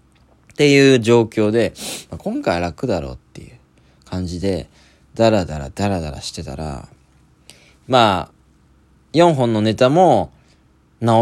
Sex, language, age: male, Japanese, 20-39